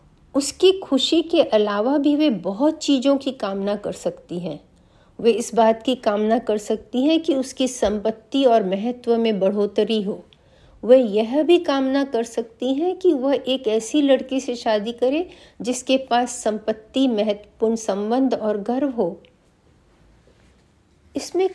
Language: Hindi